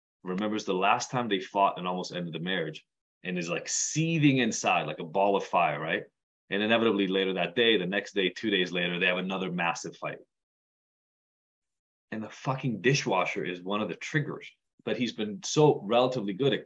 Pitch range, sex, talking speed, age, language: 95-140 Hz, male, 195 wpm, 20-39, English